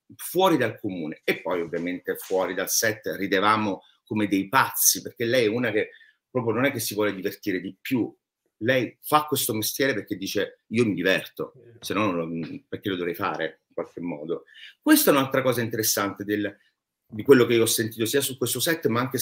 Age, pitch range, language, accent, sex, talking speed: 40-59, 105-150 Hz, Italian, native, male, 195 wpm